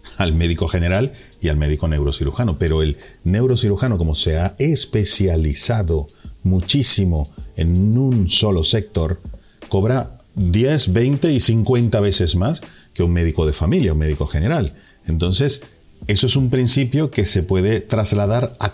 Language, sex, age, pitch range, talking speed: Spanish, male, 40-59, 80-110 Hz, 140 wpm